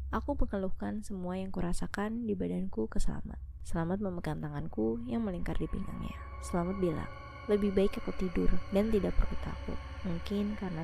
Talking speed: 155 wpm